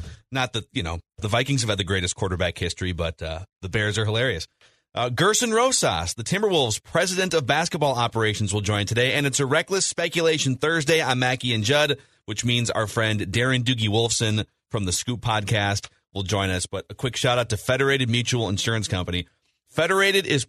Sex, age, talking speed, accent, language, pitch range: male, 30-49, 195 wpm, American, English, 100-135 Hz